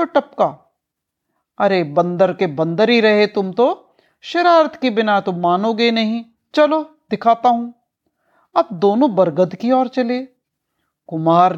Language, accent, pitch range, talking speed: Hindi, native, 190-300 Hz, 120 wpm